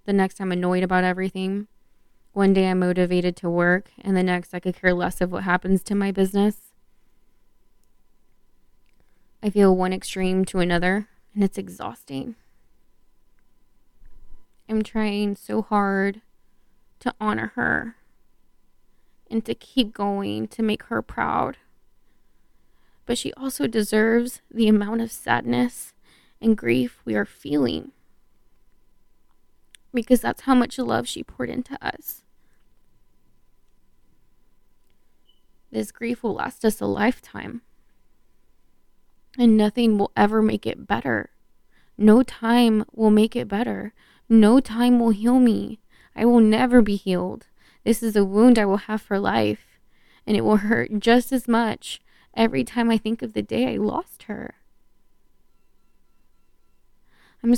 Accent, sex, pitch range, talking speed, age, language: American, female, 190-230 Hz, 135 wpm, 20-39, English